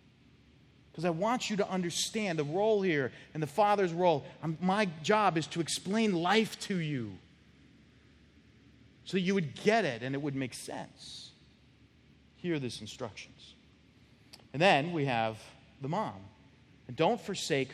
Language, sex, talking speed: English, male, 150 wpm